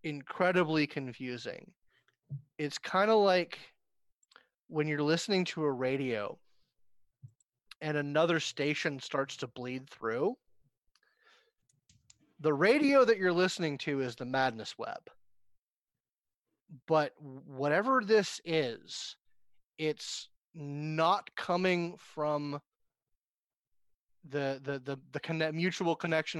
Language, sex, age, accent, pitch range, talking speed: English, male, 30-49, American, 130-170 Hz, 100 wpm